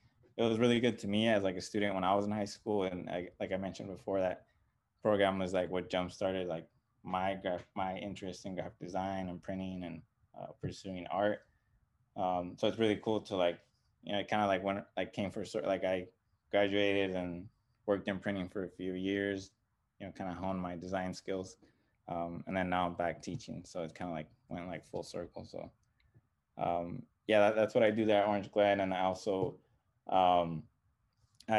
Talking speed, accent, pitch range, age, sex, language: 210 wpm, American, 90-105 Hz, 20-39, male, English